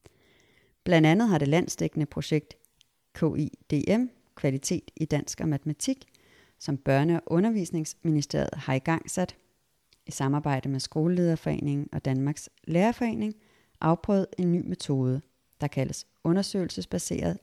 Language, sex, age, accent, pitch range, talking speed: Danish, female, 30-49, native, 145-185 Hz, 110 wpm